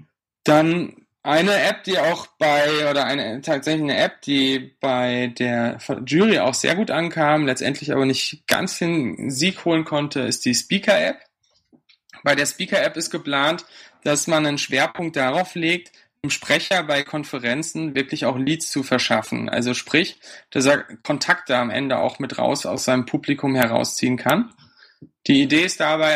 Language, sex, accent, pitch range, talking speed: German, male, German, 130-160 Hz, 165 wpm